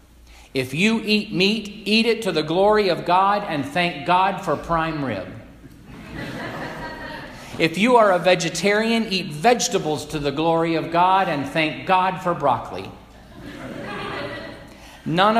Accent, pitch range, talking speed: American, 125-175 Hz, 135 wpm